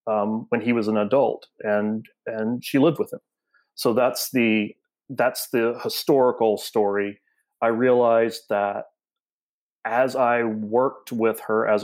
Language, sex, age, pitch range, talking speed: English, male, 30-49, 105-120 Hz, 140 wpm